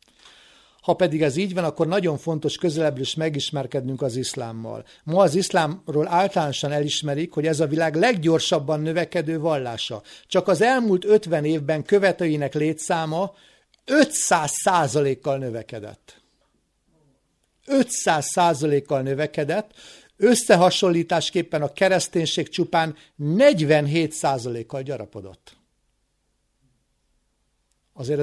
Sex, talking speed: male, 100 wpm